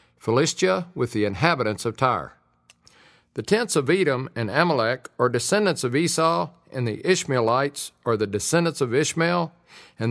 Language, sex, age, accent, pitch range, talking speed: English, male, 50-69, American, 115-170 Hz, 150 wpm